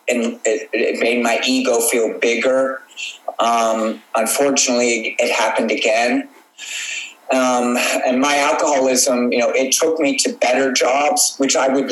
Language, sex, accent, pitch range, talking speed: English, male, American, 110-130 Hz, 135 wpm